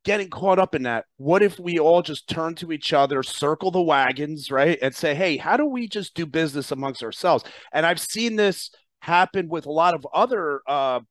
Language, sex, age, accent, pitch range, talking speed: English, male, 40-59, American, 140-190 Hz, 215 wpm